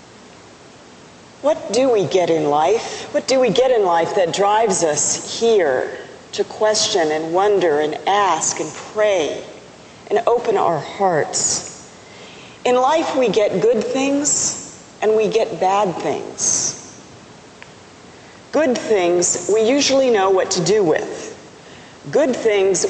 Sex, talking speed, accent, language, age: female, 130 wpm, American, English, 40-59